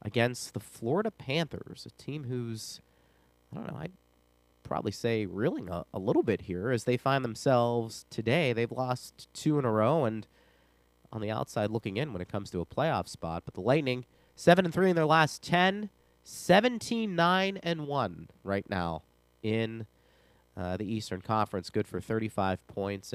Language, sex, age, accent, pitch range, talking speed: English, male, 30-49, American, 95-145 Hz, 170 wpm